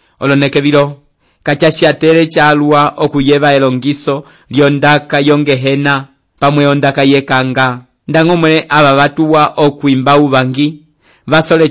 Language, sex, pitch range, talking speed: English, male, 130-150 Hz, 90 wpm